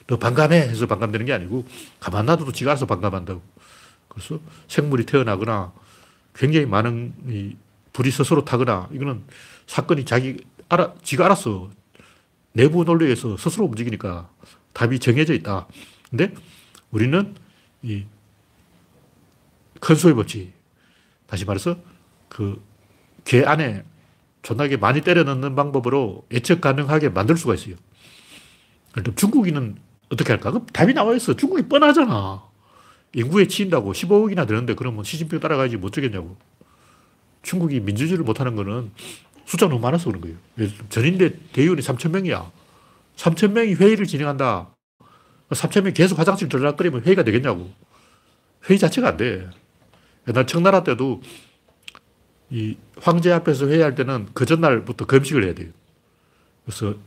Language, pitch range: Korean, 105-165 Hz